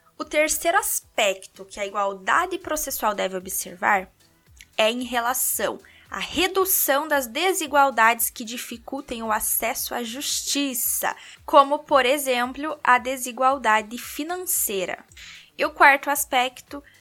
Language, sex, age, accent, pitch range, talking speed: Portuguese, female, 10-29, Brazilian, 225-300 Hz, 115 wpm